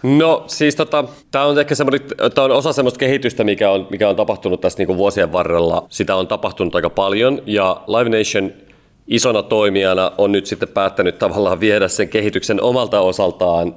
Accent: native